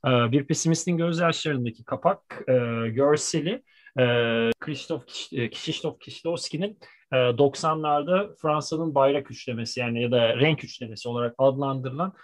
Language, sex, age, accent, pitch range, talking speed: Turkish, male, 40-59, native, 130-175 Hz, 100 wpm